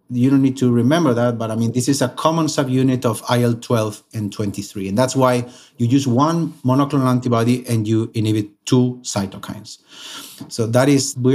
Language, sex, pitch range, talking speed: English, male, 115-140 Hz, 185 wpm